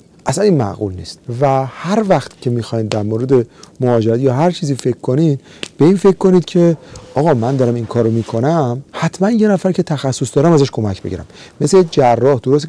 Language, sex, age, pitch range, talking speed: Persian, male, 40-59, 120-175 Hz, 190 wpm